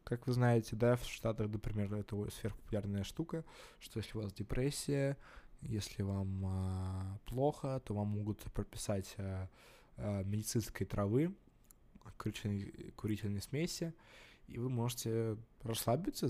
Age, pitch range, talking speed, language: 20-39, 105-125 Hz, 120 wpm, Russian